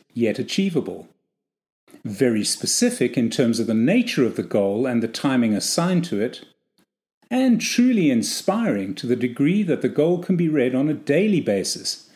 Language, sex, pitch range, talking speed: English, male, 120-185 Hz, 170 wpm